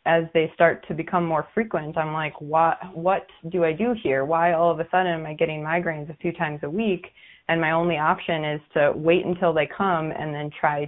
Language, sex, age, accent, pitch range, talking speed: English, female, 20-39, American, 150-175 Hz, 225 wpm